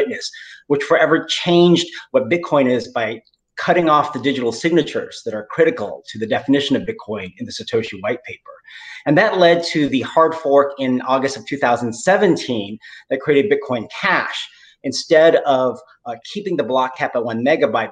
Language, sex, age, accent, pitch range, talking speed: English, male, 30-49, American, 130-175 Hz, 165 wpm